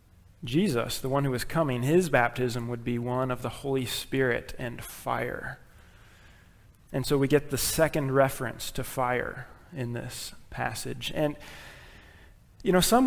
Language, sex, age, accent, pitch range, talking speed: English, male, 30-49, American, 125-150 Hz, 150 wpm